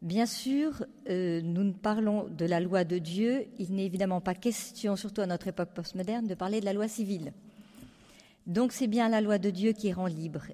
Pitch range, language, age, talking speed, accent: 200-240 Hz, French, 50-69, 210 wpm, French